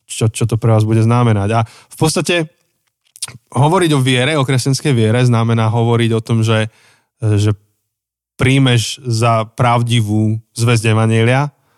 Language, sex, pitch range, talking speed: Slovak, male, 115-135 Hz, 140 wpm